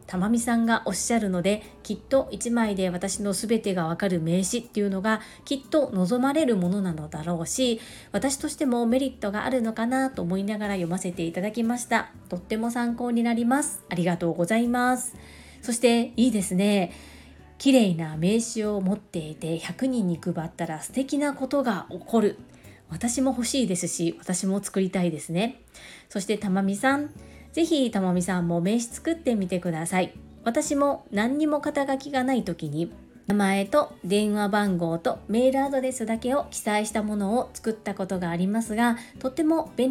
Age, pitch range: 40-59, 185-255 Hz